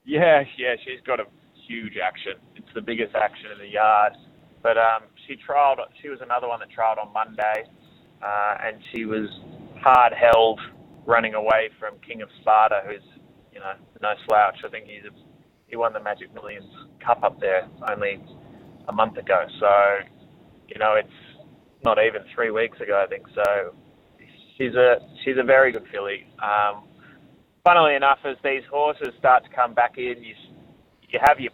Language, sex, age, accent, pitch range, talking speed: English, male, 20-39, Australian, 110-155 Hz, 175 wpm